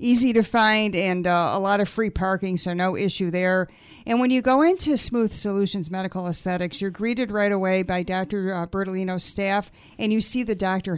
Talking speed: 195 wpm